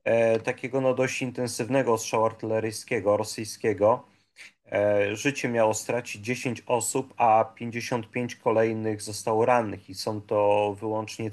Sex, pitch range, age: male, 110-130 Hz, 30-49